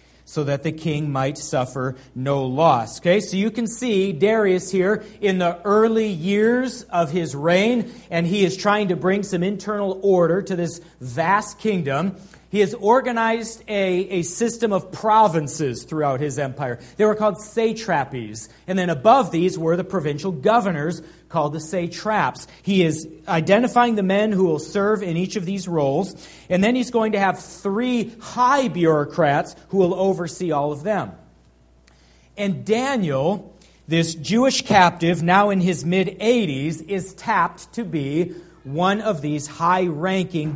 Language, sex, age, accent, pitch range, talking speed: English, male, 40-59, American, 150-205 Hz, 155 wpm